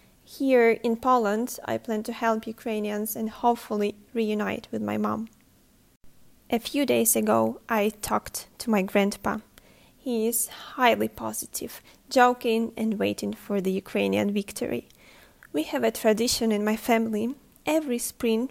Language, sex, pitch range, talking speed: English, female, 210-235 Hz, 140 wpm